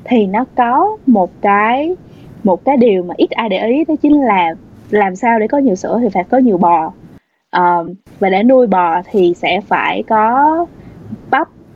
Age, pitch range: 20-39, 185-260 Hz